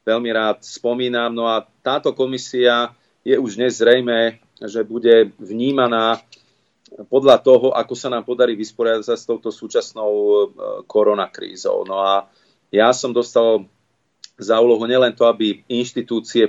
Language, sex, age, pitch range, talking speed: Slovak, male, 40-59, 110-125 Hz, 125 wpm